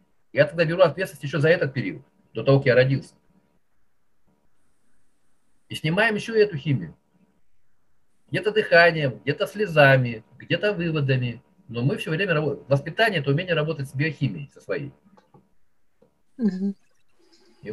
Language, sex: Russian, male